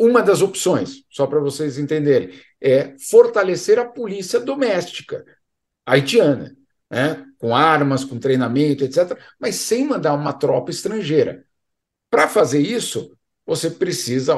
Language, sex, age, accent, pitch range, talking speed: Portuguese, male, 50-69, Brazilian, 125-170 Hz, 125 wpm